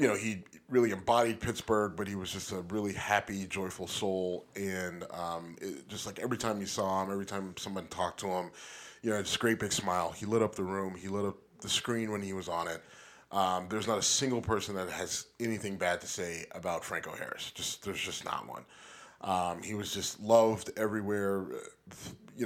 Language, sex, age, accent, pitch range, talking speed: English, male, 30-49, American, 95-120 Hz, 210 wpm